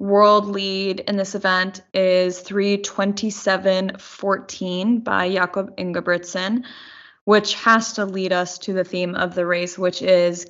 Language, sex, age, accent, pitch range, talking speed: English, female, 20-39, American, 180-200 Hz, 135 wpm